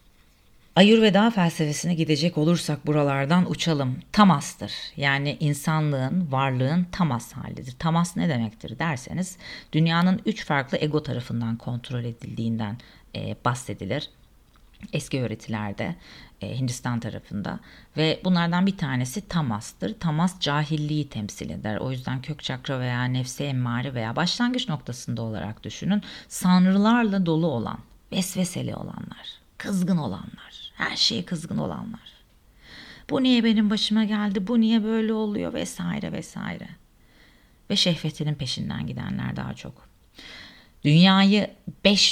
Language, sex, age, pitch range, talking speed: Turkish, female, 40-59, 125-185 Hz, 115 wpm